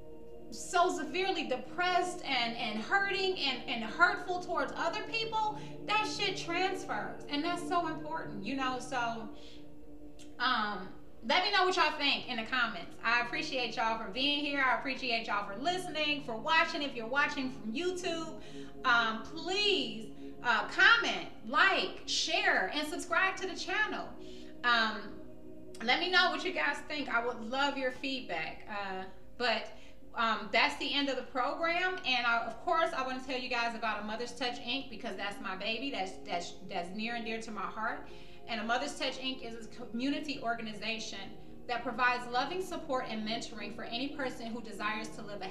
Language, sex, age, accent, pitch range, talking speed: English, female, 30-49, American, 220-295 Hz, 175 wpm